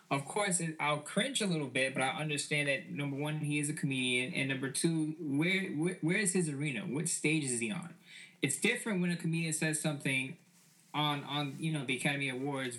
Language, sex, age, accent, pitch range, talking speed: English, male, 10-29, American, 130-170 Hz, 210 wpm